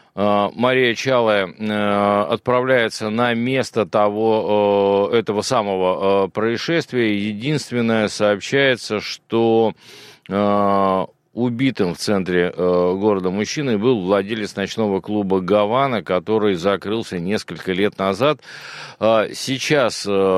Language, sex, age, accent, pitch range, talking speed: Russian, male, 50-69, native, 105-130 Hz, 80 wpm